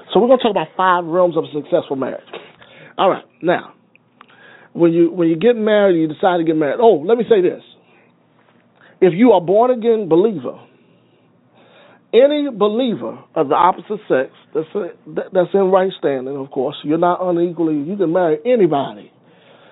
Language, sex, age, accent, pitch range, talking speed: English, male, 40-59, American, 150-190 Hz, 175 wpm